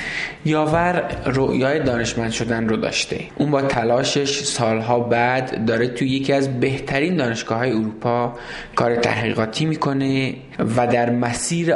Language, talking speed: Persian, 120 wpm